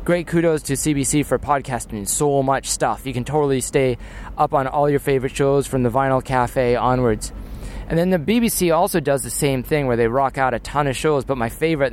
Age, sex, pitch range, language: 30-49, male, 130-155 Hz, English